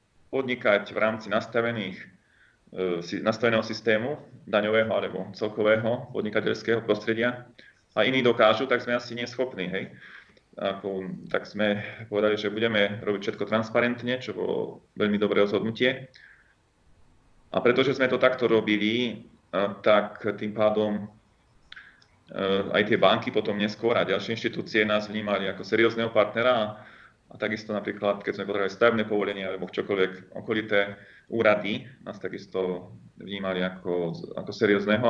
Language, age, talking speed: Slovak, 30-49, 125 wpm